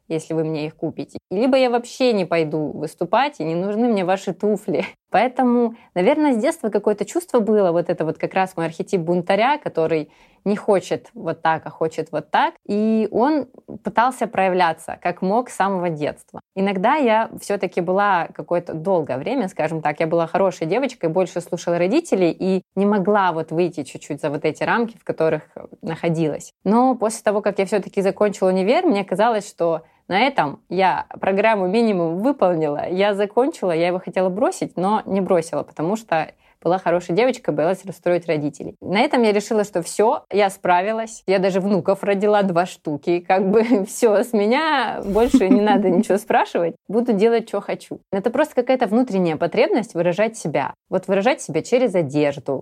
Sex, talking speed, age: female, 175 wpm, 20-39